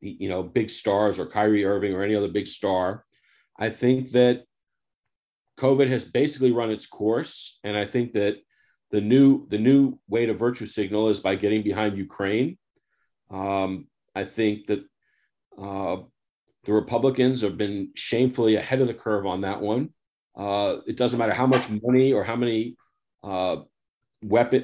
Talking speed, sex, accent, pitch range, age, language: 165 wpm, male, American, 105-120 Hz, 40-59, English